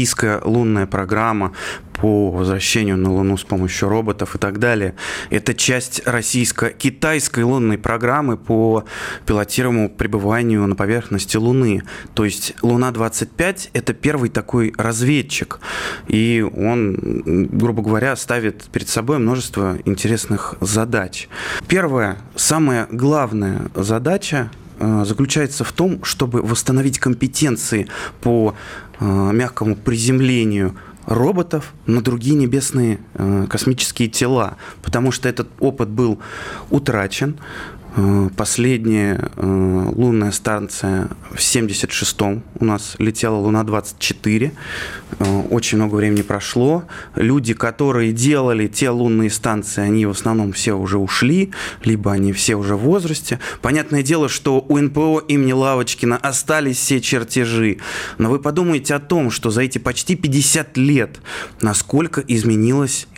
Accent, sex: native, male